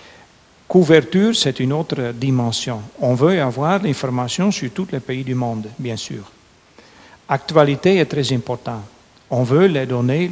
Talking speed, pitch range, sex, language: 145 wpm, 125-170 Hz, male, French